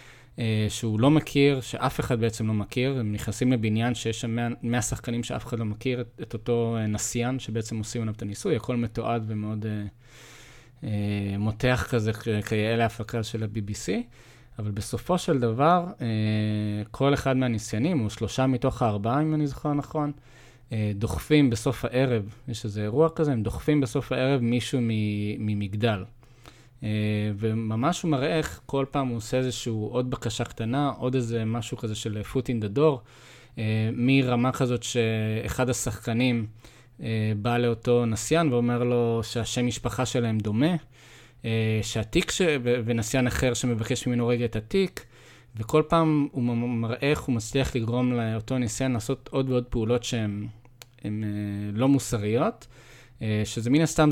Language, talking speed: English, 140 wpm